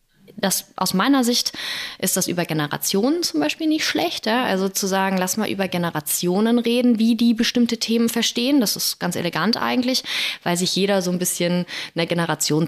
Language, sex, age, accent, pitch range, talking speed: German, female, 20-39, German, 170-215 Hz, 185 wpm